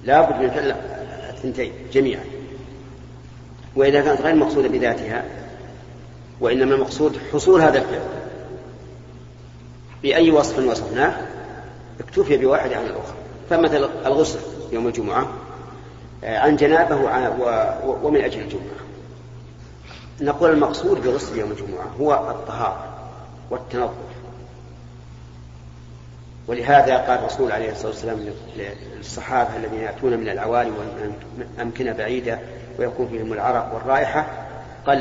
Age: 40-59